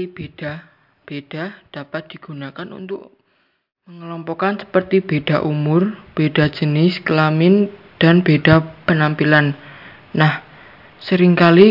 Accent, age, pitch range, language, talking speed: native, 20-39, 155-190 Hz, Indonesian, 80 wpm